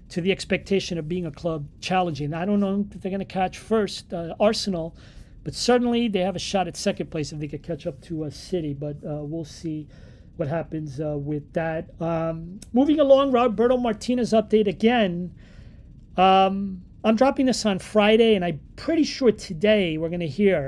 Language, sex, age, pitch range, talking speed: English, male, 40-59, 160-200 Hz, 195 wpm